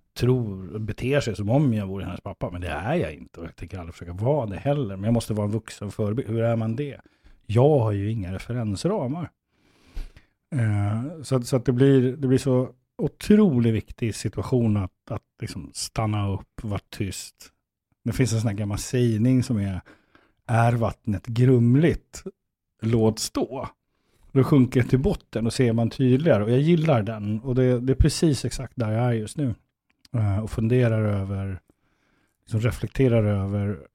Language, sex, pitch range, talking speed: Swedish, male, 105-125 Hz, 180 wpm